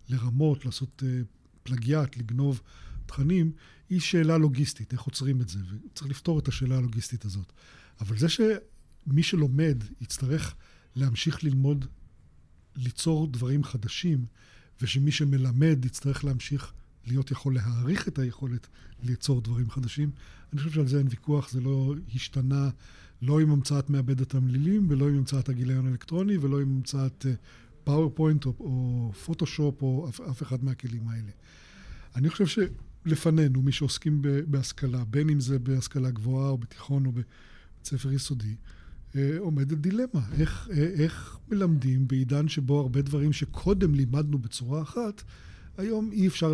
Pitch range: 125-150 Hz